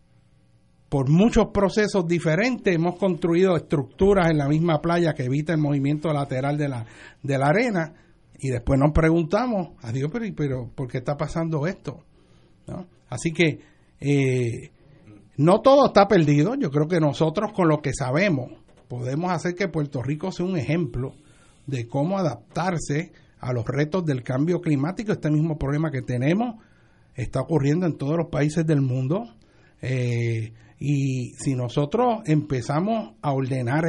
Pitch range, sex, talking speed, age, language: 130-175 Hz, male, 150 wpm, 60-79, Spanish